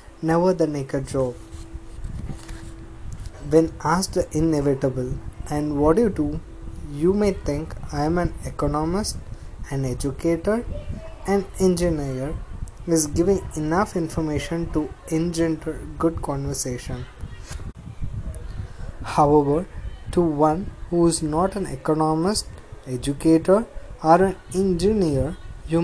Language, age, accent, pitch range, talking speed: English, 20-39, Indian, 130-170 Hz, 105 wpm